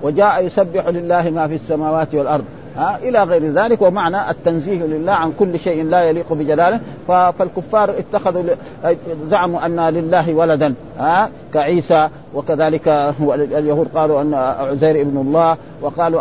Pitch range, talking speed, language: 155-200 Hz, 125 wpm, Arabic